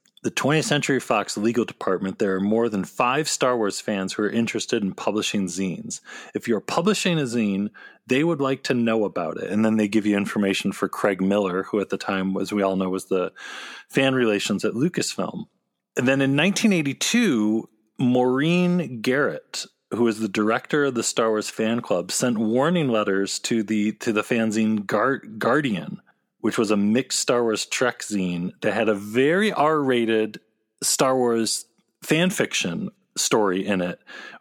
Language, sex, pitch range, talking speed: English, male, 105-135 Hz, 175 wpm